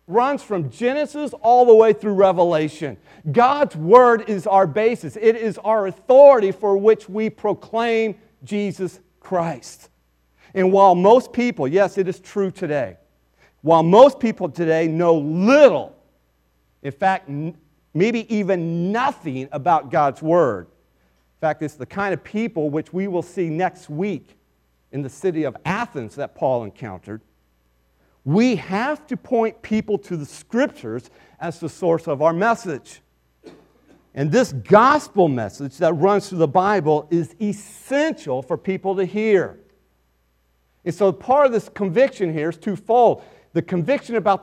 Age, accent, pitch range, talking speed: 40-59, American, 155-225 Hz, 145 wpm